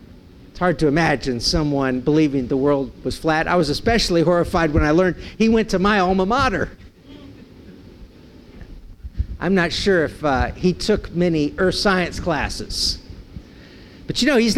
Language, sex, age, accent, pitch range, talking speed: English, male, 50-69, American, 125-195 Hz, 150 wpm